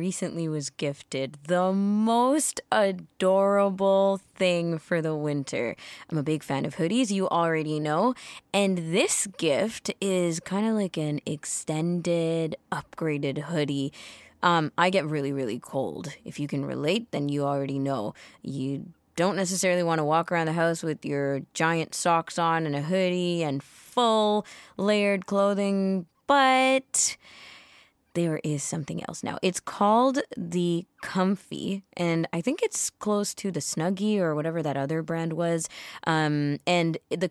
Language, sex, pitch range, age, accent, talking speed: English, female, 150-190 Hz, 20-39, American, 150 wpm